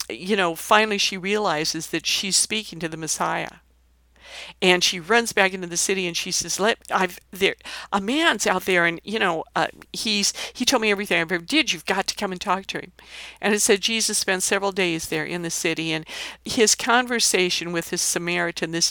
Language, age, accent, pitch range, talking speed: English, 50-69, American, 170-215 Hz, 210 wpm